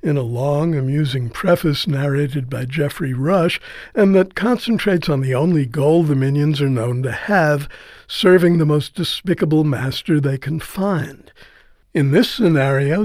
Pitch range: 140-180 Hz